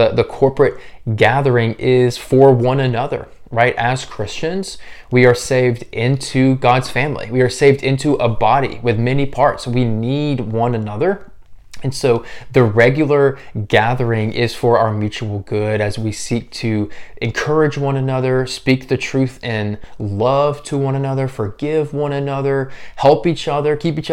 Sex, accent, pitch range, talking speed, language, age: male, American, 115-135 Hz, 155 wpm, English, 20-39